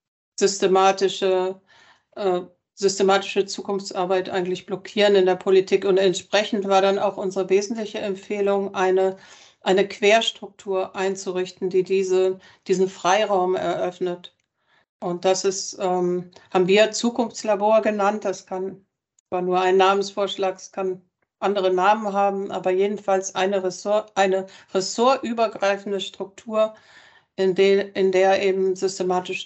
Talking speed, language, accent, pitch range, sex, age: 115 wpm, German, German, 185-200 Hz, female, 60-79